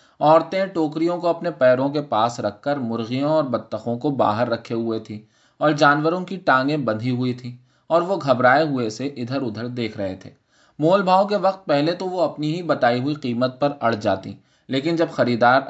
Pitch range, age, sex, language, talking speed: 115-150 Hz, 20-39, male, Urdu, 200 wpm